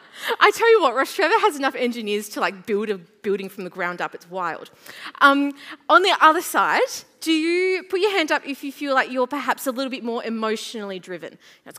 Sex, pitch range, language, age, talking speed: female, 200-285 Hz, English, 20-39, 225 wpm